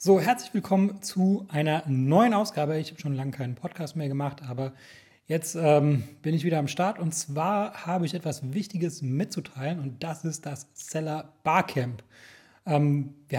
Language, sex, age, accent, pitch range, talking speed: German, male, 30-49, German, 145-180 Hz, 170 wpm